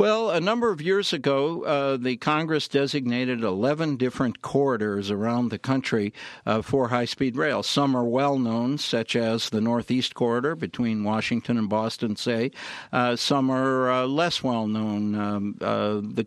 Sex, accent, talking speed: male, American, 150 wpm